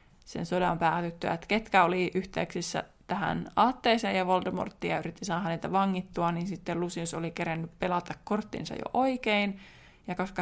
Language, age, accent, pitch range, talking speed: Finnish, 20-39, native, 175-215 Hz, 150 wpm